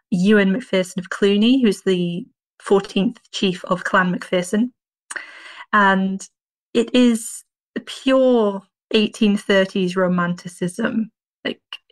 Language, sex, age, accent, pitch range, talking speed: English, female, 20-39, British, 185-220 Hz, 95 wpm